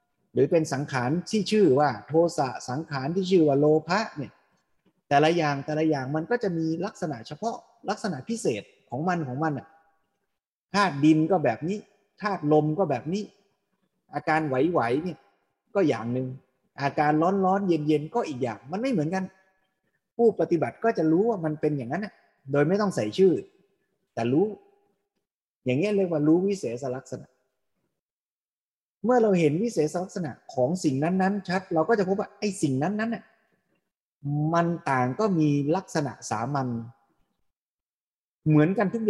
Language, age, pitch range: Thai, 30-49, 145-195 Hz